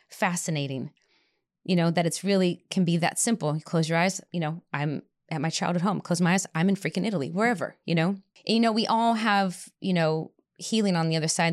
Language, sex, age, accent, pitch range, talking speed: English, female, 20-39, American, 155-185 Hz, 230 wpm